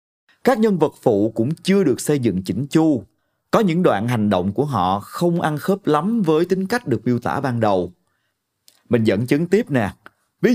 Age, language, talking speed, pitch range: 30-49, Vietnamese, 205 wpm, 110-175 Hz